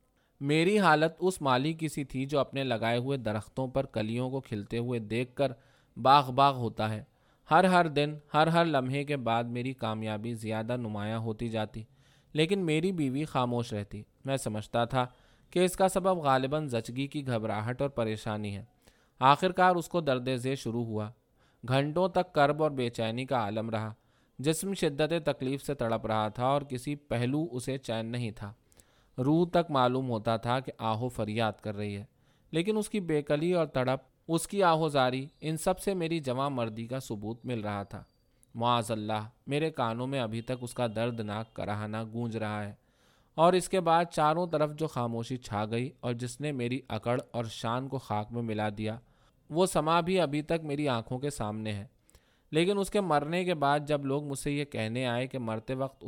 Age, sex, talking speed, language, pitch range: 20-39, male, 195 wpm, Urdu, 115-150 Hz